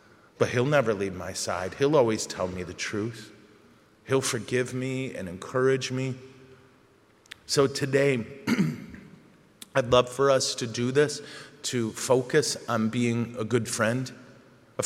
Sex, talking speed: male, 140 wpm